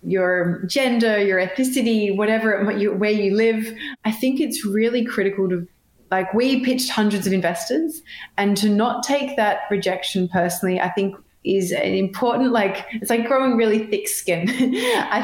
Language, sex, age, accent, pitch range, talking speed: English, female, 20-39, Australian, 190-240 Hz, 160 wpm